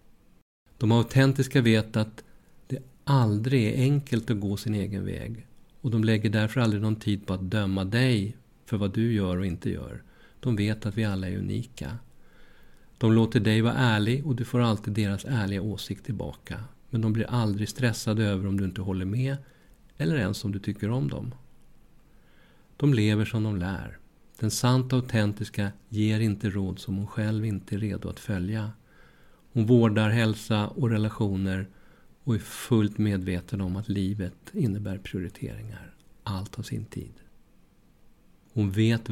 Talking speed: 165 wpm